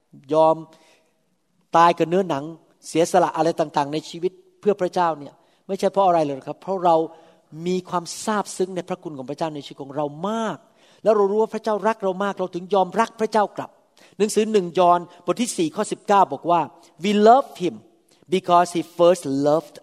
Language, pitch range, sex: Thai, 160-205 Hz, male